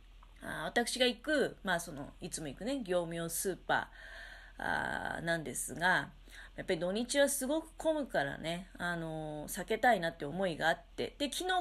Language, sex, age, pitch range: Japanese, female, 30-49, 165-280 Hz